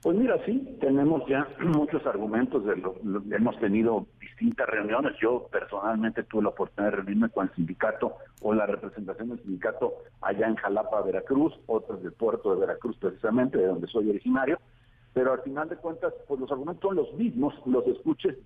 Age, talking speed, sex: 50-69, 180 wpm, male